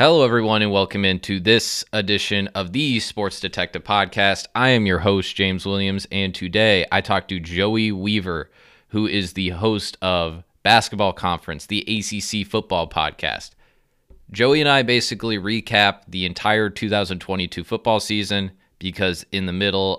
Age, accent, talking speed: 20-39, American, 150 wpm